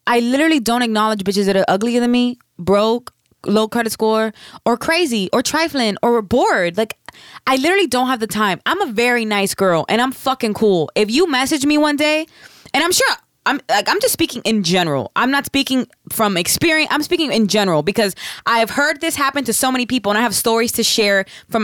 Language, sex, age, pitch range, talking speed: English, female, 20-39, 200-275 Hz, 220 wpm